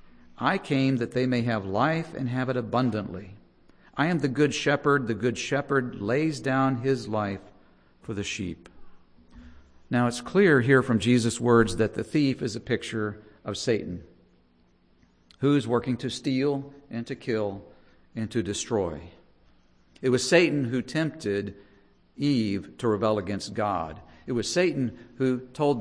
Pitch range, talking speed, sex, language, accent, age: 95-130 Hz, 155 wpm, male, English, American, 50-69